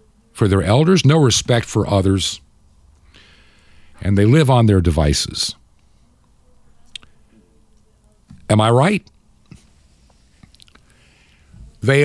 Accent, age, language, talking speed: American, 50-69, English, 85 wpm